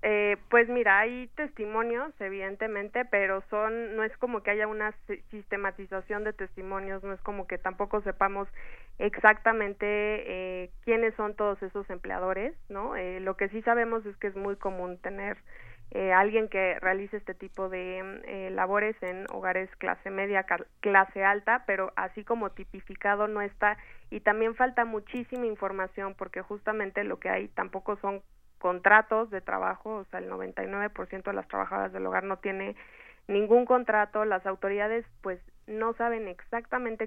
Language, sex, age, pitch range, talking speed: Spanish, female, 20-39, 190-215 Hz, 160 wpm